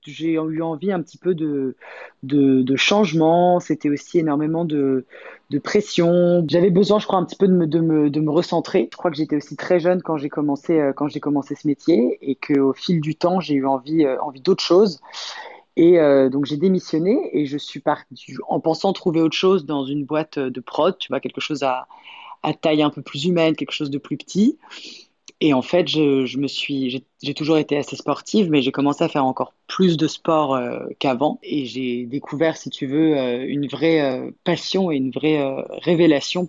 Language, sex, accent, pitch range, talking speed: English, female, French, 140-170 Hz, 215 wpm